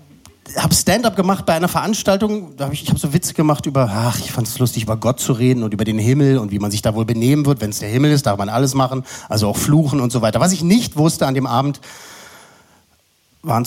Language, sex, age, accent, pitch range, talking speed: German, male, 40-59, German, 120-160 Hz, 260 wpm